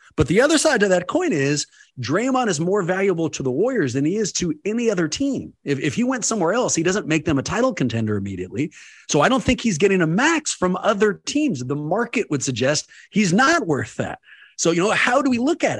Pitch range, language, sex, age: 135-185 Hz, English, male, 30-49